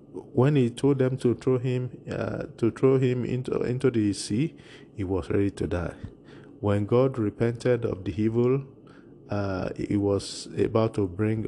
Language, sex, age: English, male, 50-69